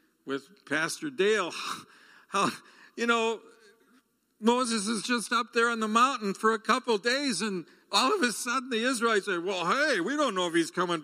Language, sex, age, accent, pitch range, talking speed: English, male, 60-79, American, 180-270 Hz, 190 wpm